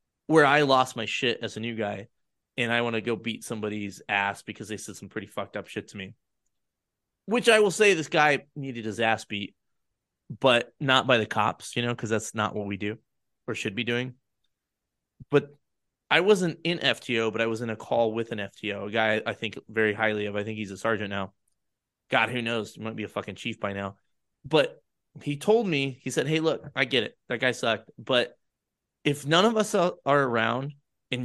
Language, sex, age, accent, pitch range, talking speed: English, male, 20-39, American, 110-150 Hz, 220 wpm